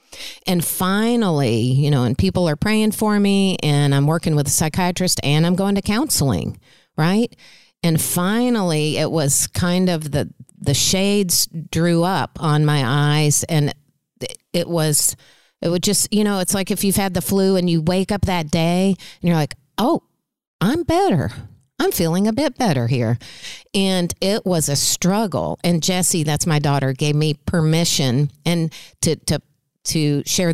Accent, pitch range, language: American, 145-185 Hz, English